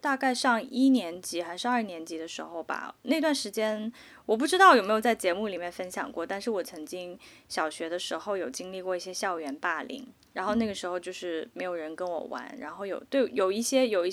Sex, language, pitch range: female, Chinese, 185-250 Hz